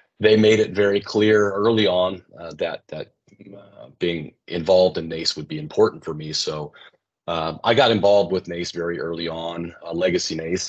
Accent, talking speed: American, 185 wpm